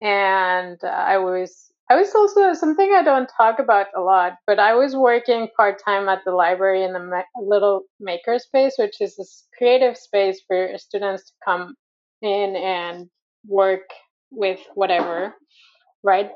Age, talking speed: 30-49, 160 wpm